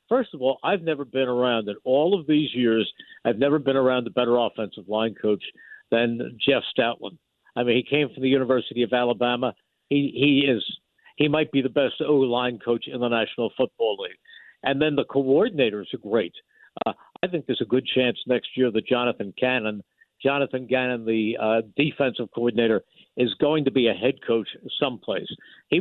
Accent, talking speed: American, 190 wpm